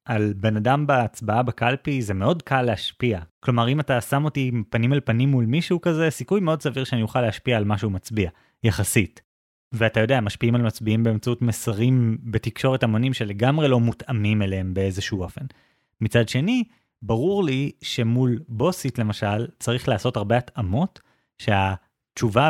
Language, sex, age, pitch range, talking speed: Hebrew, male, 30-49, 105-135 Hz, 155 wpm